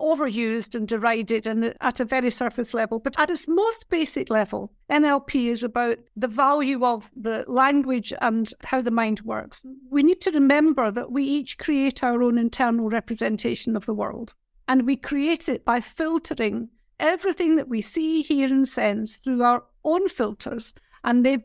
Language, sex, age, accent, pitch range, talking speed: English, female, 50-69, British, 230-290 Hz, 175 wpm